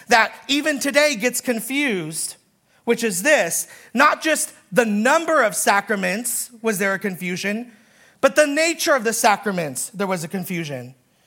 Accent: American